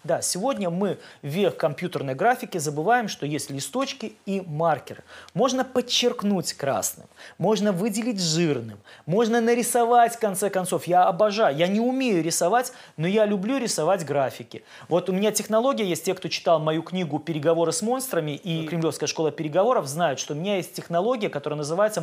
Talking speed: 160 wpm